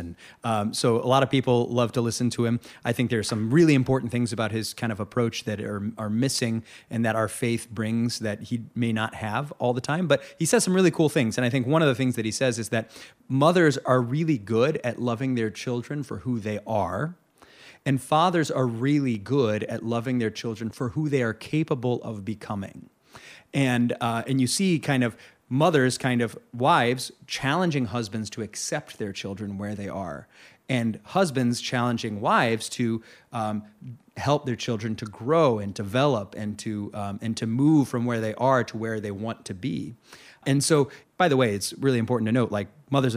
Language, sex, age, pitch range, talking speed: English, male, 30-49, 110-135 Hz, 205 wpm